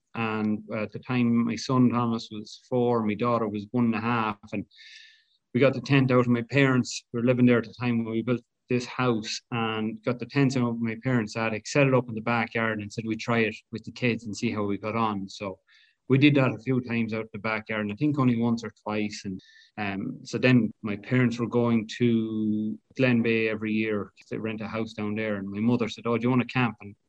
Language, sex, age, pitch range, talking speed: English, male, 30-49, 110-125 Hz, 255 wpm